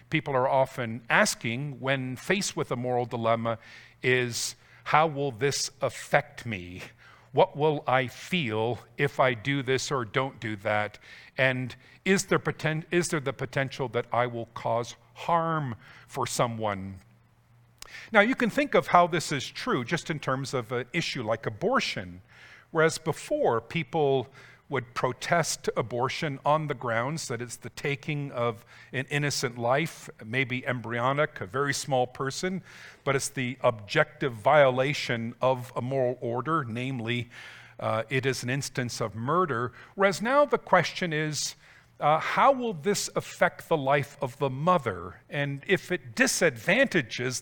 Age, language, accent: 50-69, English, American